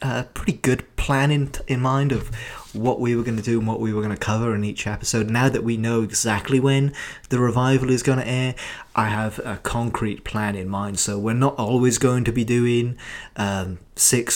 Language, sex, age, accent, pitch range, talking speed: English, male, 30-49, British, 105-125 Hz, 220 wpm